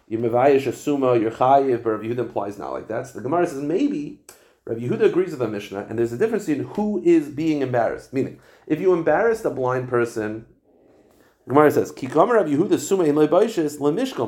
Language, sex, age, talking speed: English, male, 40-59, 160 wpm